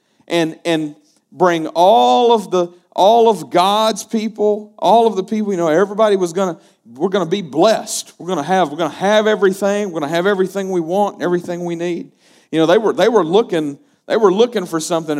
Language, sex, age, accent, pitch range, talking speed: English, male, 50-69, American, 150-210 Hz, 205 wpm